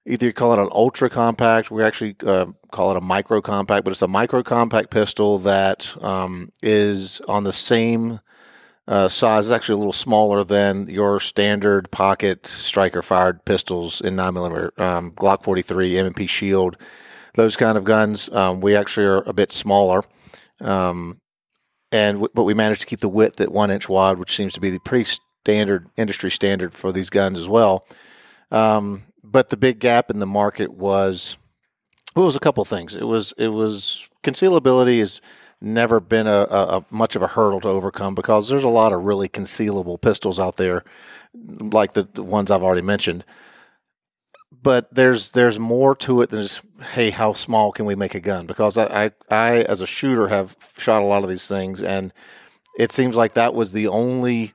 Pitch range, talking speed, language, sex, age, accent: 95-115 Hz, 185 wpm, English, male, 50-69, American